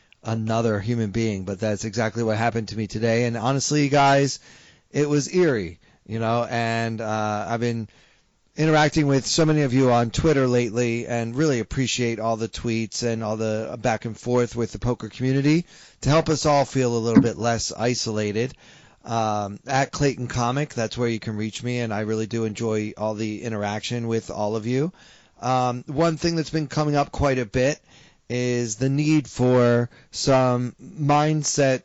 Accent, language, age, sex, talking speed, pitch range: American, English, 30-49, male, 185 wpm, 115-145 Hz